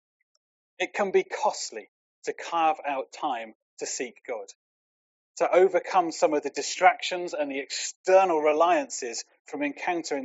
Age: 30-49